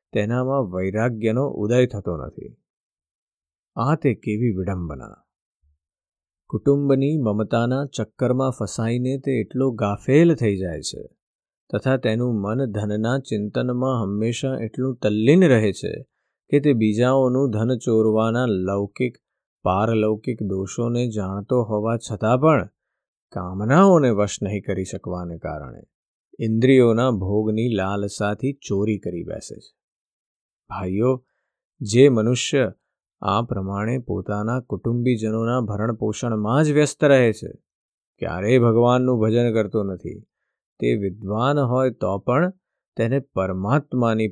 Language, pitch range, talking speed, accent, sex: Gujarati, 105-125 Hz, 90 wpm, native, male